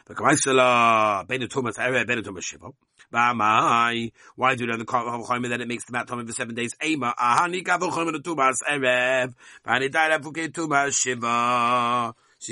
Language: English